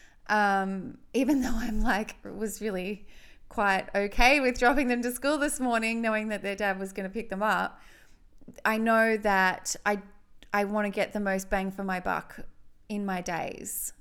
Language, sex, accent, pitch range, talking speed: English, female, Australian, 190-220 Hz, 190 wpm